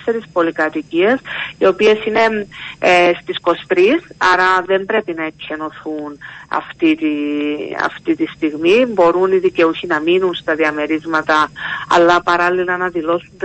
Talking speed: 125 wpm